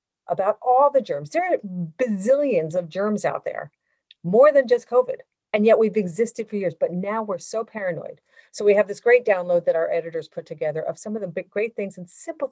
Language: English